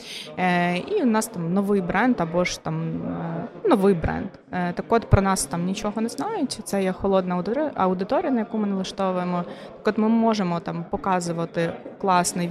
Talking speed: 165 wpm